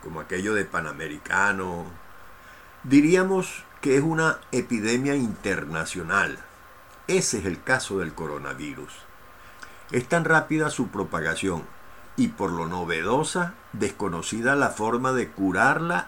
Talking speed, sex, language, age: 110 wpm, male, Spanish, 60-79